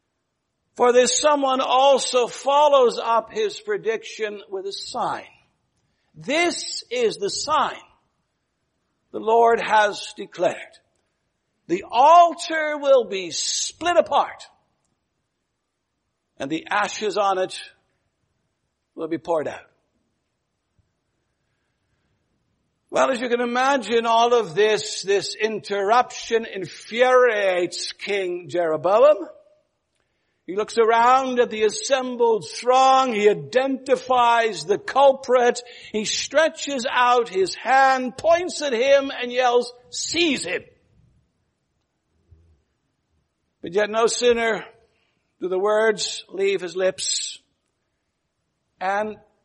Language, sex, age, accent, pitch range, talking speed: English, male, 60-79, American, 210-290 Hz, 100 wpm